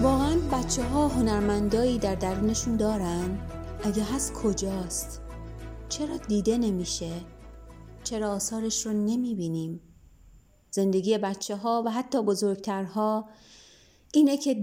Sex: female